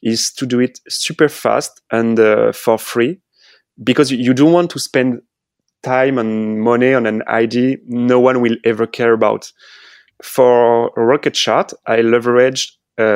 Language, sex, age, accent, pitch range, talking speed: English, male, 30-49, French, 115-140 Hz, 155 wpm